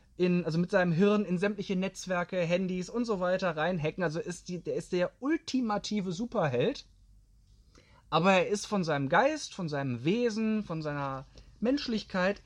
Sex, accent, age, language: male, German, 20-39, German